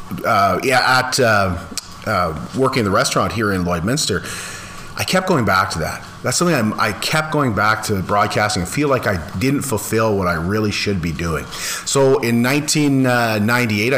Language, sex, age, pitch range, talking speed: English, male, 40-59, 100-125 Hz, 175 wpm